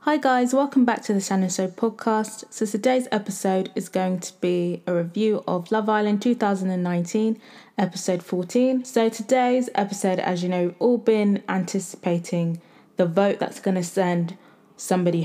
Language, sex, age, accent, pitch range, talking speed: English, female, 20-39, British, 180-225 Hz, 160 wpm